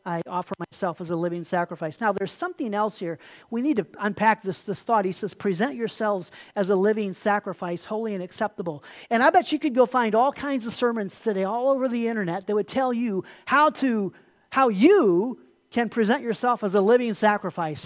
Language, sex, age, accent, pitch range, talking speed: English, male, 40-59, American, 185-235 Hz, 205 wpm